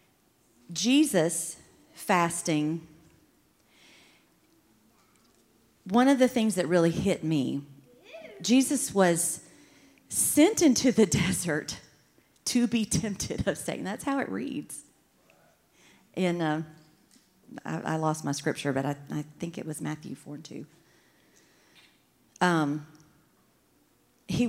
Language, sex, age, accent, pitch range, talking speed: English, female, 40-59, American, 165-265 Hz, 110 wpm